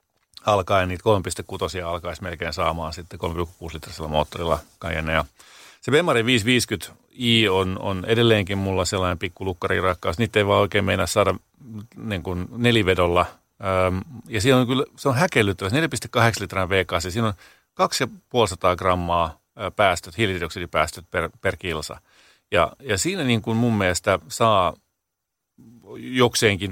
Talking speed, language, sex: 125 wpm, Finnish, male